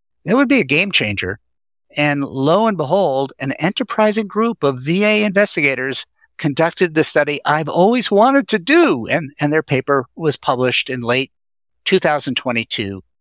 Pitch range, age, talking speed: 115-165 Hz, 50-69, 150 wpm